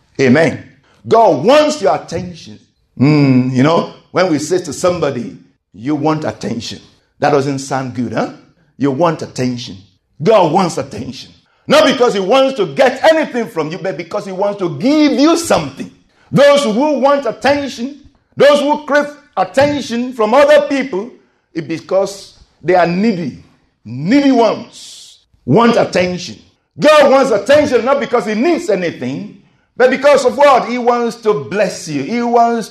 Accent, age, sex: Nigerian, 50-69, male